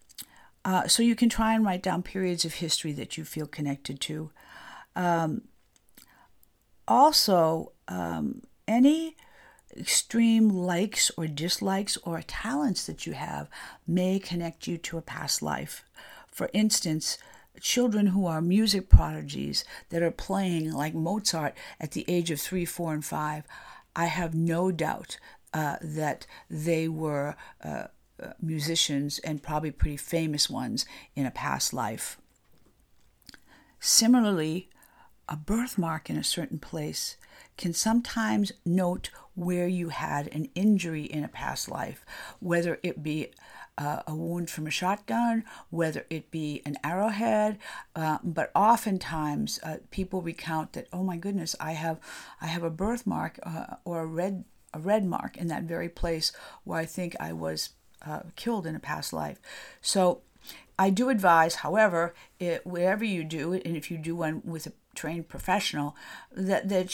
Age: 50-69